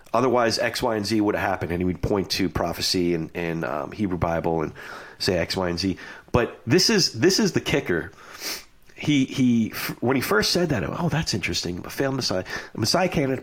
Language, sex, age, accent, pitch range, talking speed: English, male, 40-59, American, 100-160 Hz, 215 wpm